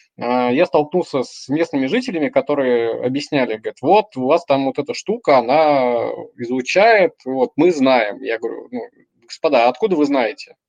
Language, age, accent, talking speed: Russian, 20-39, native, 150 wpm